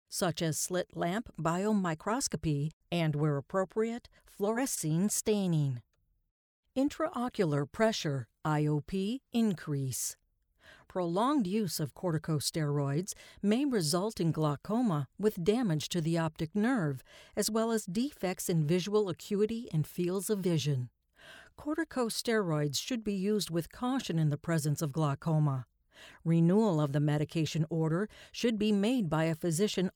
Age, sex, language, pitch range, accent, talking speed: 50-69, female, English, 155-215 Hz, American, 120 wpm